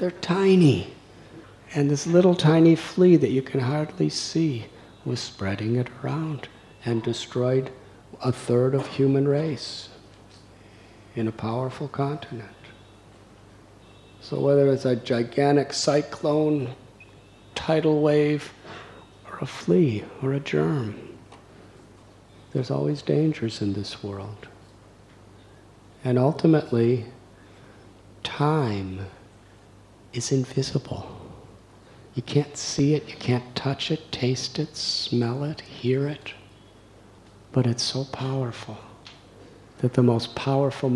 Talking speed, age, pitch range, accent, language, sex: 110 wpm, 50-69, 105-135 Hz, American, English, male